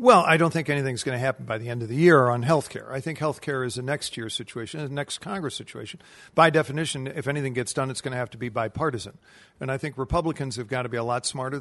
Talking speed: 275 wpm